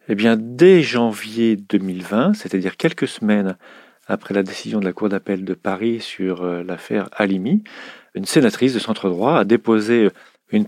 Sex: male